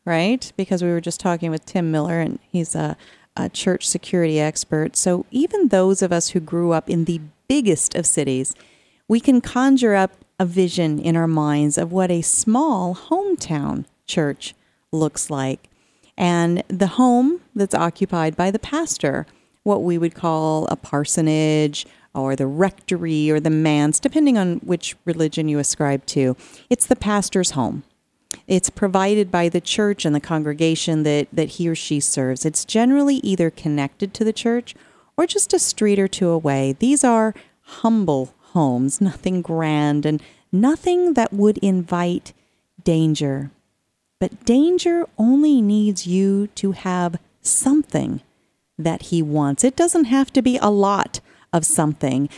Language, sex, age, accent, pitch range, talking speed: English, female, 40-59, American, 155-215 Hz, 155 wpm